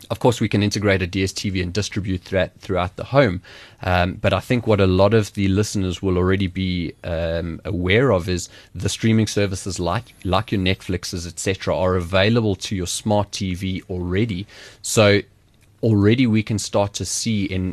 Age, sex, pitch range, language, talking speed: 20-39, male, 90-110 Hz, English, 175 wpm